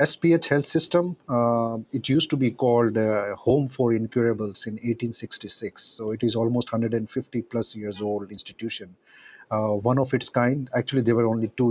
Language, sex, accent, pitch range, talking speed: English, male, Indian, 110-125 Hz, 175 wpm